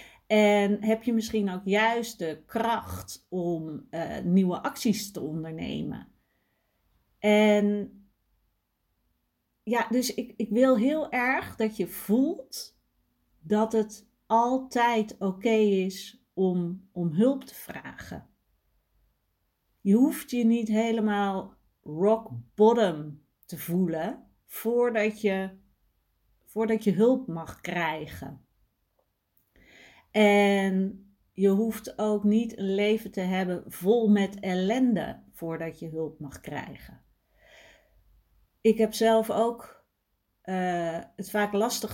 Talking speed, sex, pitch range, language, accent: 105 wpm, female, 175-220 Hz, Dutch, Dutch